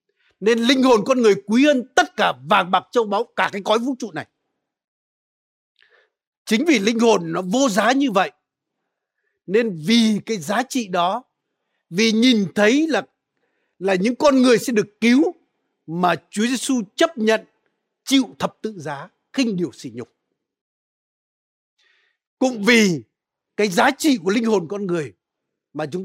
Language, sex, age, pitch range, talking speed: Vietnamese, male, 60-79, 185-250 Hz, 160 wpm